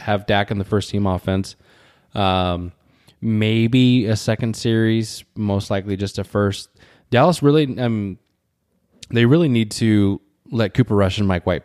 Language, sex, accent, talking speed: English, male, American, 155 wpm